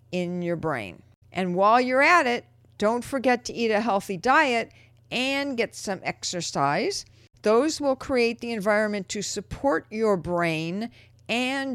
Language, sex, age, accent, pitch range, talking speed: English, female, 50-69, American, 165-240 Hz, 150 wpm